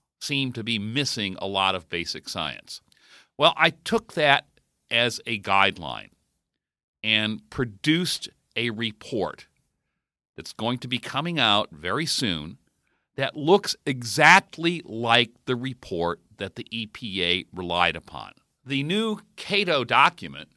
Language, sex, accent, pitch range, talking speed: English, male, American, 105-150 Hz, 125 wpm